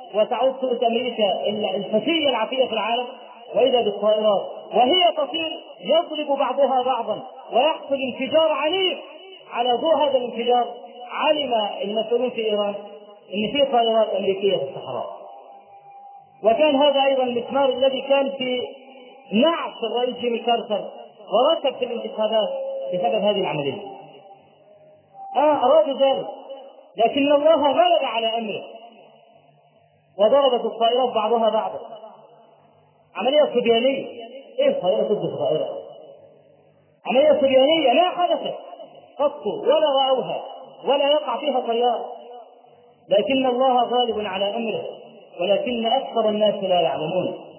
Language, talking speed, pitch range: Arabic, 110 wpm, 200-275 Hz